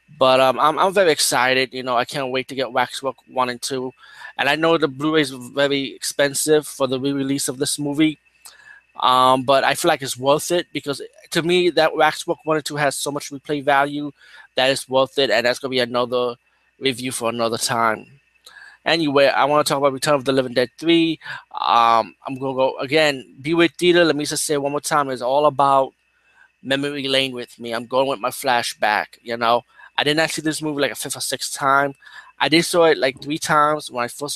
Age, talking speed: 20-39, 230 wpm